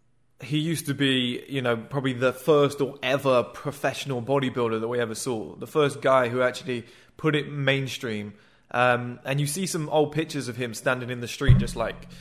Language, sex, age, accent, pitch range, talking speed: English, male, 20-39, British, 120-145 Hz, 195 wpm